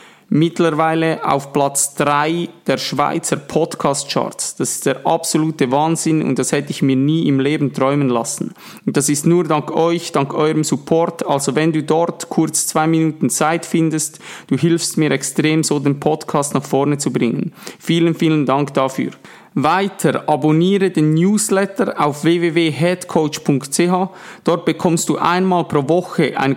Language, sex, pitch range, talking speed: German, male, 150-175 Hz, 155 wpm